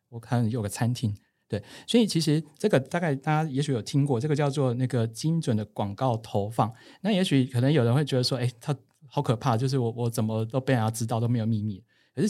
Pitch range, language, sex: 115-145 Hz, Chinese, male